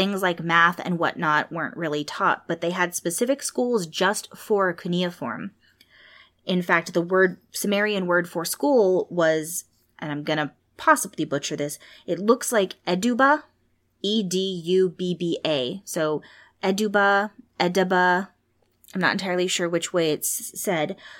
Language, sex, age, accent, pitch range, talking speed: English, female, 20-39, American, 160-195 Hz, 135 wpm